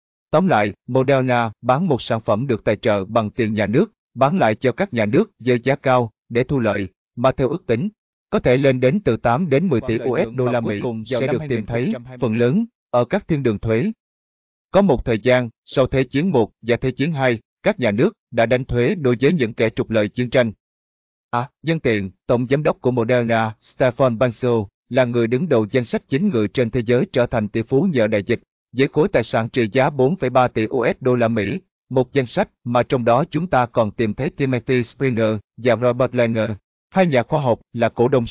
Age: 20-39